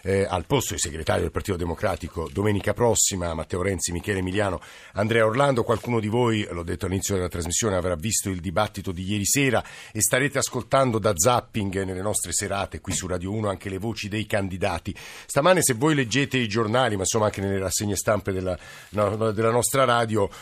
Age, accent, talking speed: 50-69, native, 190 wpm